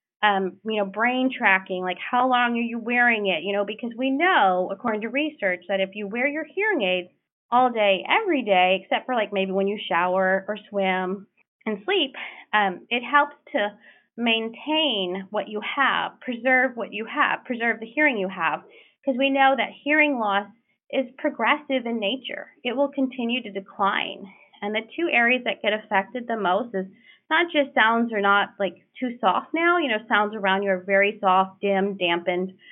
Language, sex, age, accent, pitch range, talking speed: English, female, 30-49, American, 195-255 Hz, 190 wpm